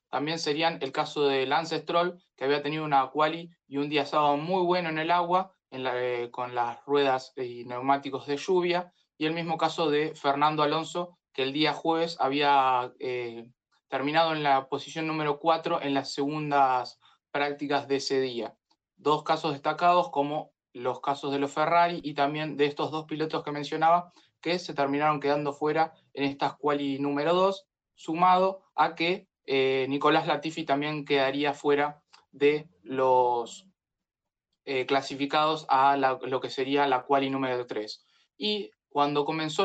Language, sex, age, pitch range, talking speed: Spanish, male, 20-39, 140-165 Hz, 160 wpm